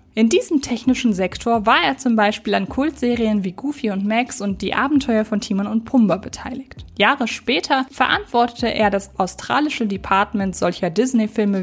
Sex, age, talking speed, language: female, 20-39, 160 wpm, German